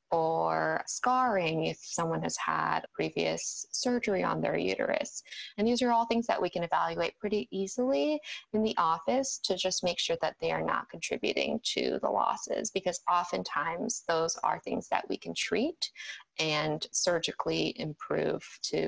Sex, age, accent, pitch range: female, 20-39, American, 155-225 Hz